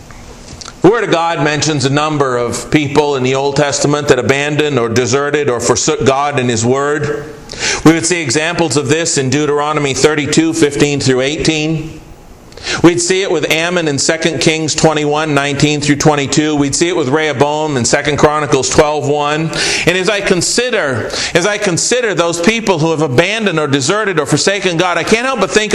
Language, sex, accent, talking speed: English, male, American, 180 wpm